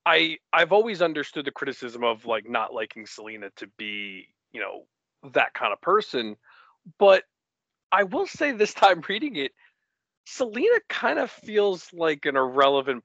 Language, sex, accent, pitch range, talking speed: English, male, American, 120-200 Hz, 155 wpm